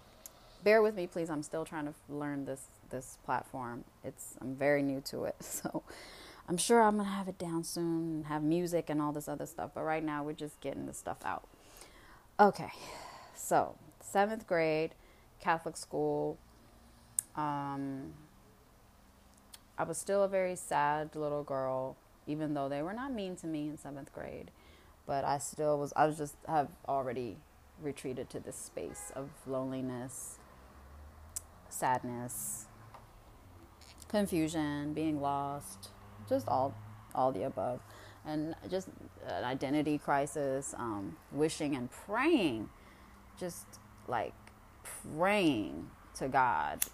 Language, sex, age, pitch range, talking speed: Amharic, female, 30-49, 120-160 Hz, 140 wpm